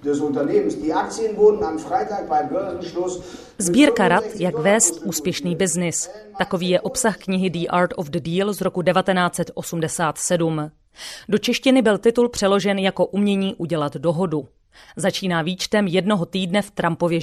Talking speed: 115 wpm